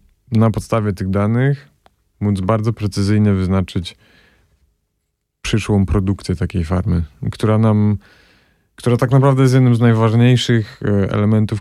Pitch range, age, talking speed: 95-110 Hz, 30-49, 115 wpm